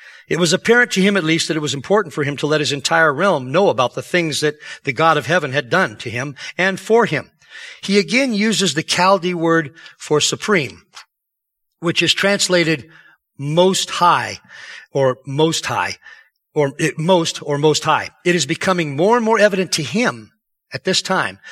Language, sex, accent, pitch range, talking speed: English, male, American, 140-185 Hz, 185 wpm